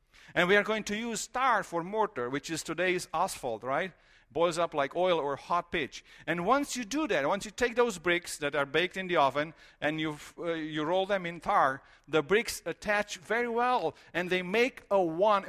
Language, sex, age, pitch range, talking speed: English, male, 50-69, 140-190 Hz, 215 wpm